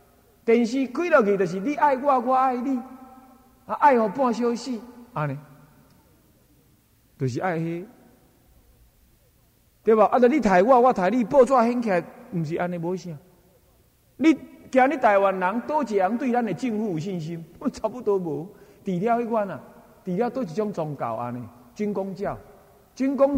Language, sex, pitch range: Chinese, male, 150-245 Hz